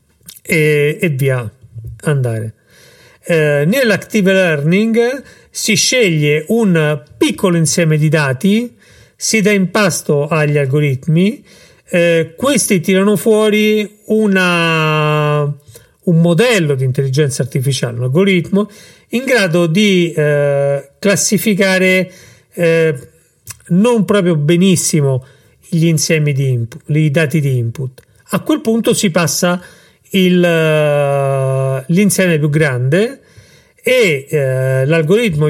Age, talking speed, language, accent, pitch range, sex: 40-59, 100 wpm, Italian, native, 145-195 Hz, male